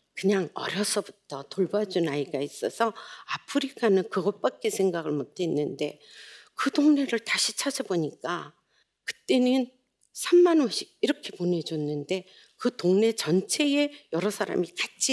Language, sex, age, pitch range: Korean, female, 50-69, 160-245 Hz